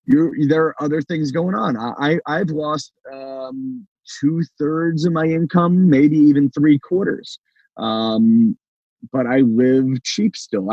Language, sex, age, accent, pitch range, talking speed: English, male, 30-49, American, 130-170 Hz, 145 wpm